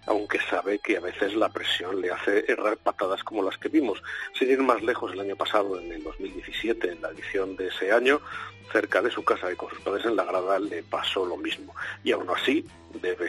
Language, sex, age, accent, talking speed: Spanish, male, 40-59, Spanish, 225 wpm